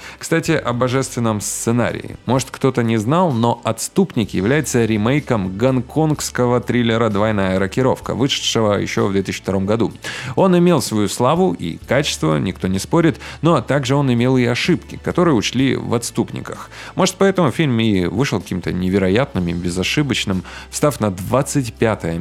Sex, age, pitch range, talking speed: male, 30-49, 105-135 Hz, 140 wpm